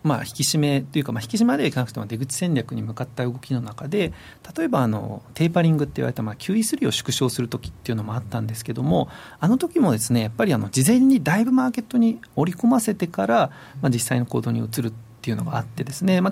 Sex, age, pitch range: male, 40-59, 120-185 Hz